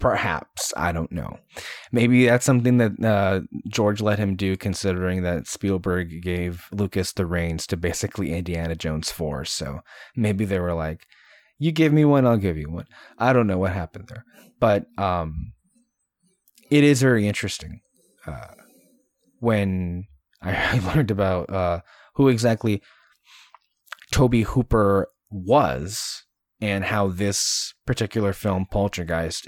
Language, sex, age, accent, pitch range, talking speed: English, male, 20-39, American, 90-120 Hz, 135 wpm